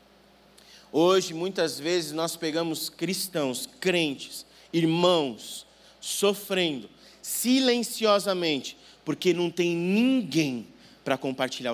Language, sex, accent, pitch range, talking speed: Portuguese, male, Brazilian, 145-200 Hz, 80 wpm